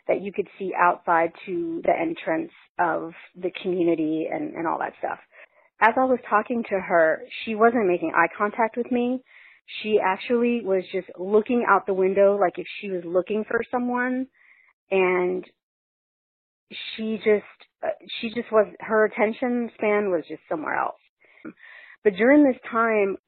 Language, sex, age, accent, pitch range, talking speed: English, female, 40-59, American, 180-225 Hz, 155 wpm